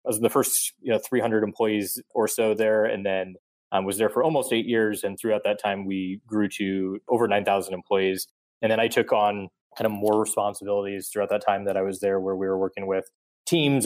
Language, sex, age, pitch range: English, male, 20-39, 100-115 Hz